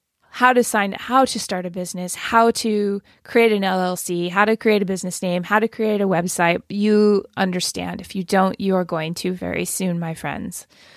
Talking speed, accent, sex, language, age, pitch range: 200 wpm, American, female, English, 20-39, 190-220 Hz